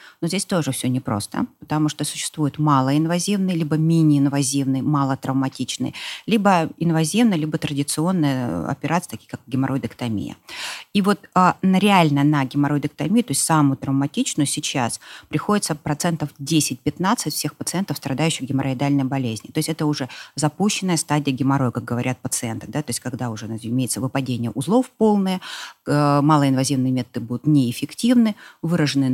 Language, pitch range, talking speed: Russian, 135-175 Hz, 130 wpm